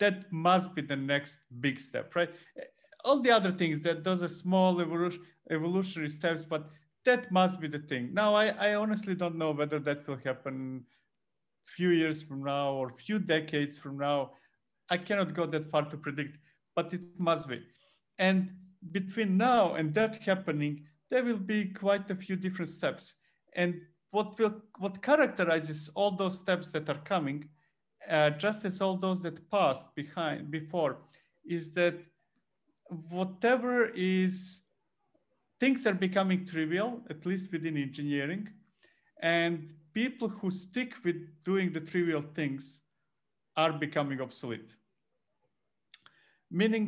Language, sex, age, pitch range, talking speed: English, male, 50-69, 150-190 Hz, 145 wpm